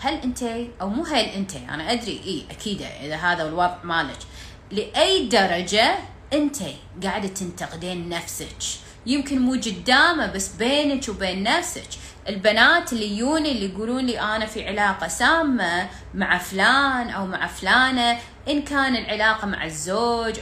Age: 30-49